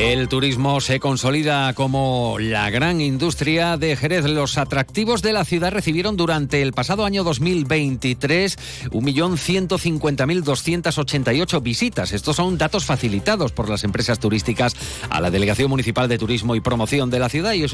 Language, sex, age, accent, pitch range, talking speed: Spanish, male, 40-59, Spanish, 115-155 Hz, 145 wpm